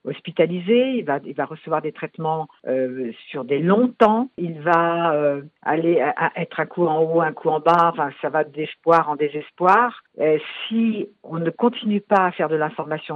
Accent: French